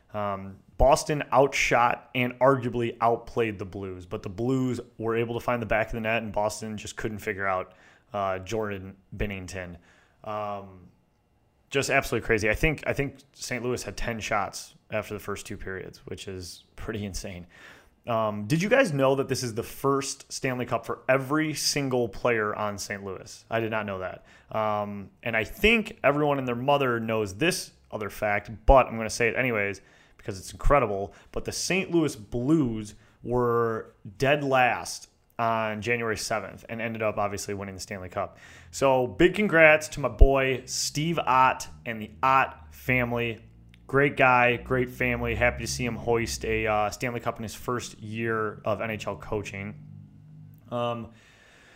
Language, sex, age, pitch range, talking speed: English, male, 30-49, 105-130 Hz, 170 wpm